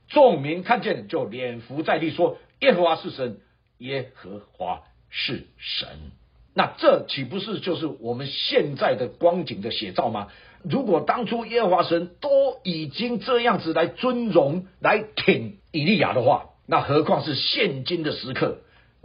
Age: 50-69